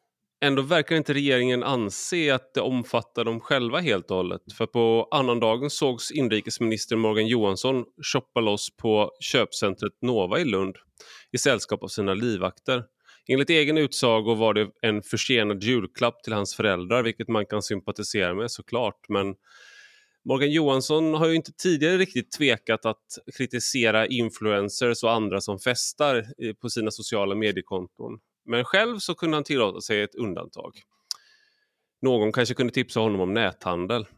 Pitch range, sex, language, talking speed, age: 110-150 Hz, male, Swedish, 150 wpm, 30-49